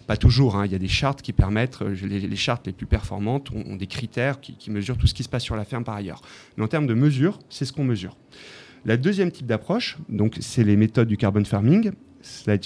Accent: French